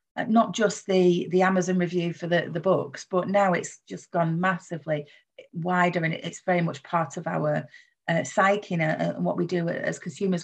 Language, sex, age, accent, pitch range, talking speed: English, female, 40-59, British, 175-220 Hz, 190 wpm